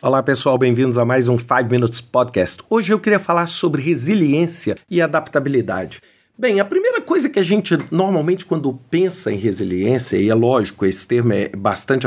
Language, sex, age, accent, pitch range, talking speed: Portuguese, male, 50-69, Brazilian, 125-180 Hz, 180 wpm